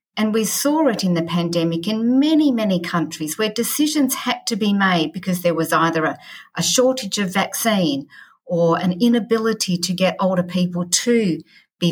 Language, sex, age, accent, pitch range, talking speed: English, female, 50-69, Australian, 175-245 Hz, 175 wpm